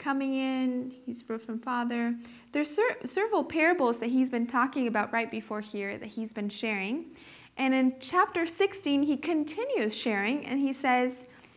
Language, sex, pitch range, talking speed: English, female, 225-295 Hz, 165 wpm